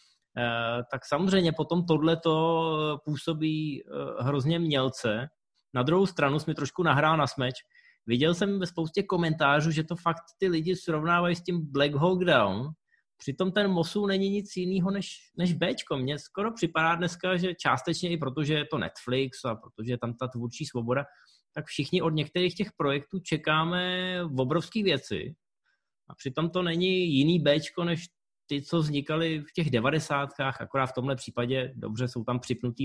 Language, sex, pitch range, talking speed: Czech, male, 130-170 Hz, 165 wpm